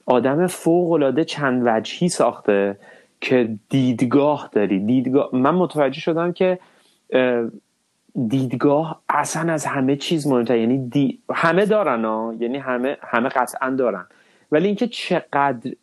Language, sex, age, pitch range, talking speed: Persian, male, 30-49, 115-145 Hz, 120 wpm